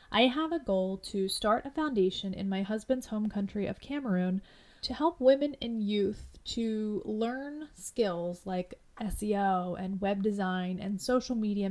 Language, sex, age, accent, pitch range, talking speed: English, female, 30-49, American, 195-235 Hz, 160 wpm